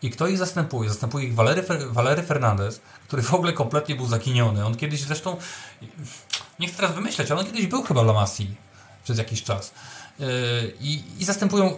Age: 30-49